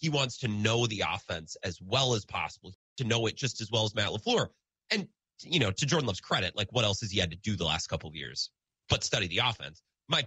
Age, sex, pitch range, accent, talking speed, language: 30-49, male, 110-160 Hz, American, 255 wpm, English